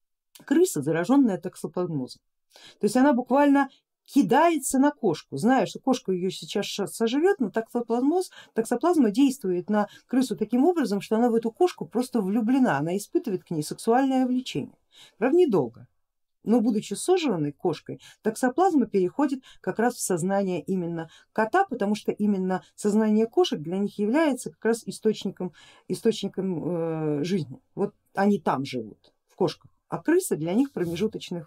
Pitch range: 180-260 Hz